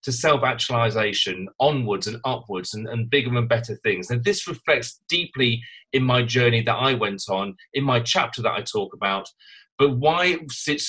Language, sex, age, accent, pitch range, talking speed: English, male, 30-49, British, 115-145 Hz, 180 wpm